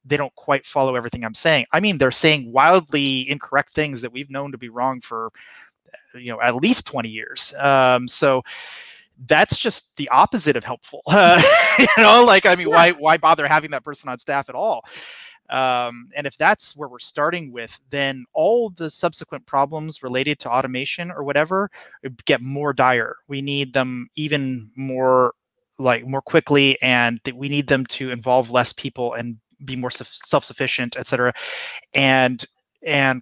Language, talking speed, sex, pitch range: English, 175 wpm, male, 125-145 Hz